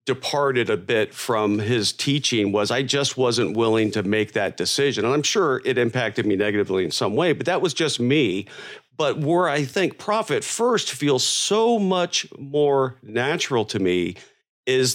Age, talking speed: 40-59, 175 wpm